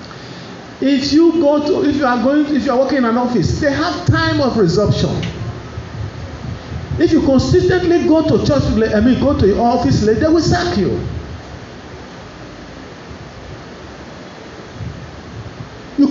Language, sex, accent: English, male, Nigerian